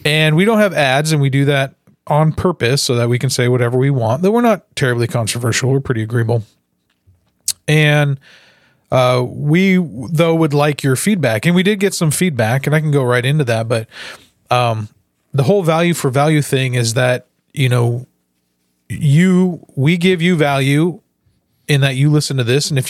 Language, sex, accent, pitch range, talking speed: English, male, American, 125-160 Hz, 190 wpm